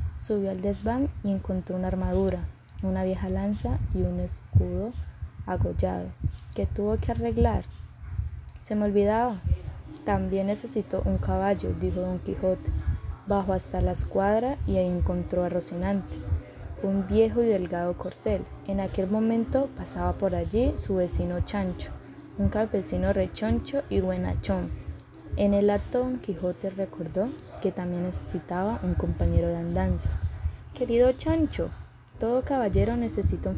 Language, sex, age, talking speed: Spanish, female, 10-29, 135 wpm